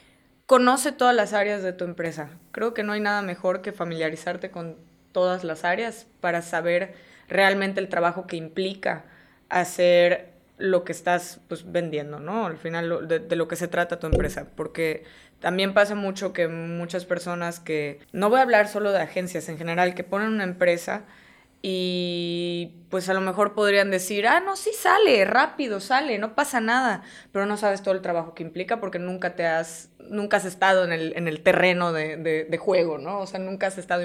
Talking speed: 190 wpm